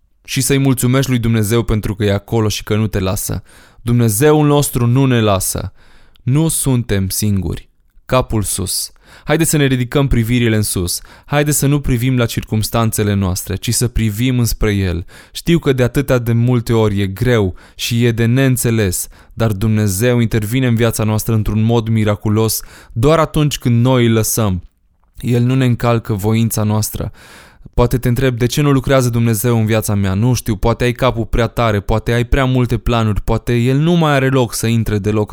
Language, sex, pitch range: Romanian, male, 105-125 Hz